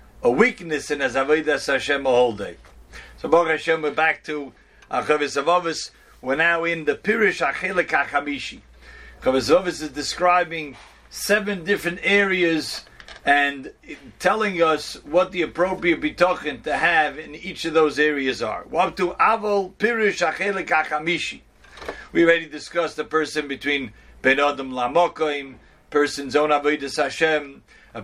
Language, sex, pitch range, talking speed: English, male, 145-180 Hz, 140 wpm